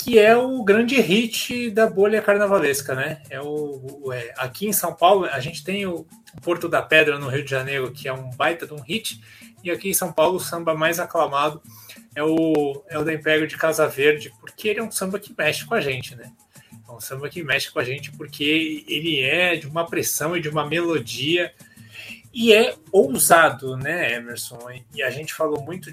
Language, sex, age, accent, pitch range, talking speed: Portuguese, male, 20-39, Brazilian, 140-200 Hz, 210 wpm